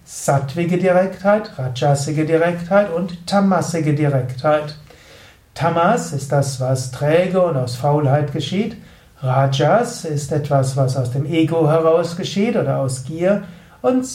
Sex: male